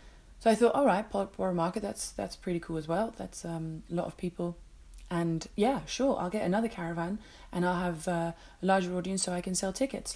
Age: 30-49